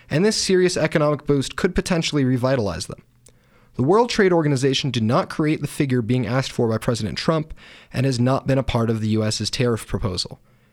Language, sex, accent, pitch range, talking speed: English, male, American, 115-155 Hz, 195 wpm